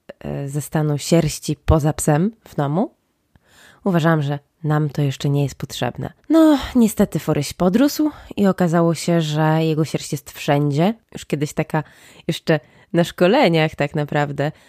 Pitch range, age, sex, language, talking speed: 155-185 Hz, 20-39, female, Polish, 145 wpm